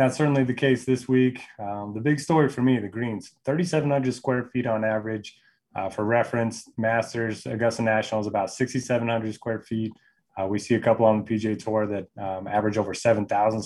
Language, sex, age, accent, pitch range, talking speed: English, male, 20-39, American, 105-120 Hz, 195 wpm